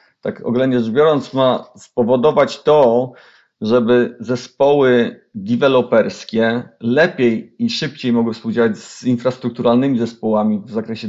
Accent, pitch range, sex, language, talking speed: native, 120-145 Hz, male, Polish, 110 wpm